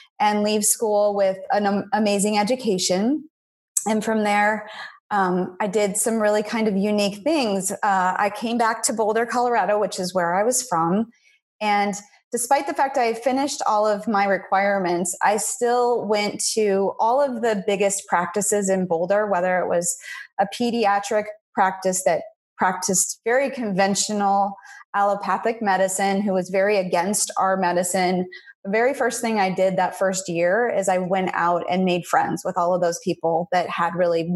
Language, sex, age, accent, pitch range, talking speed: English, female, 30-49, American, 190-225 Hz, 165 wpm